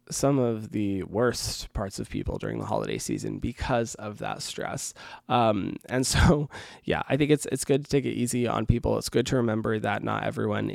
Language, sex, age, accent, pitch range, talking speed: English, male, 20-39, American, 110-135 Hz, 205 wpm